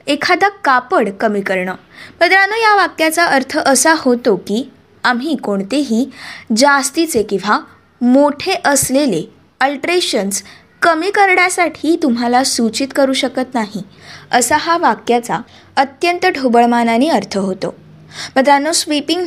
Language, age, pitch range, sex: Marathi, 20-39, 235-330 Hz, female